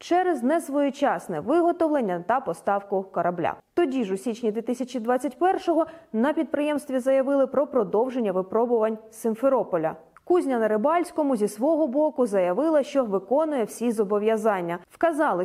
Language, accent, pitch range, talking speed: Ukrainian, native, 205-285 Hz, 115 wpm